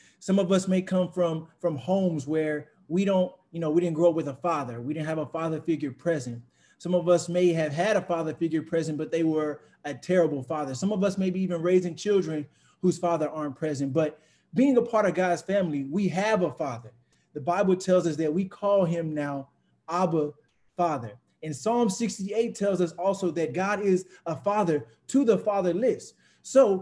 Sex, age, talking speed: male, 20-39, 205 wpm